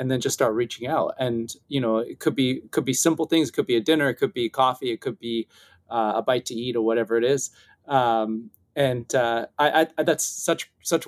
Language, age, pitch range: English, 30-49, 125-165 Hz